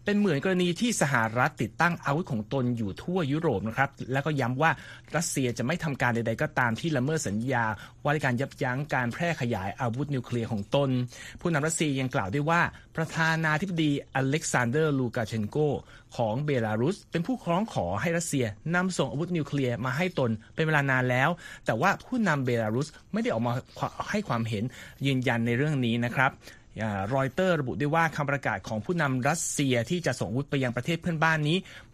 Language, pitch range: Thai, 120-160 Hz